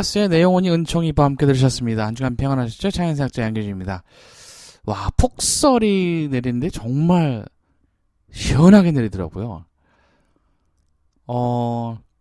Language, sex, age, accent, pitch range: Korean, male, 20-39, native, 100-155 Hz